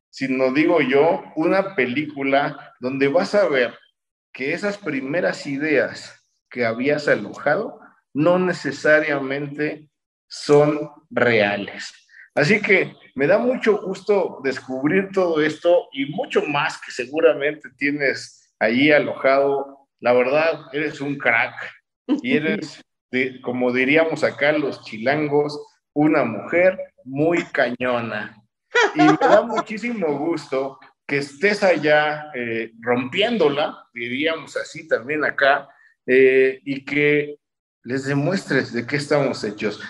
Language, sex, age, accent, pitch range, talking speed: Spanish, male, 50-69, Mexican, 135-185 Hz, 115 wpm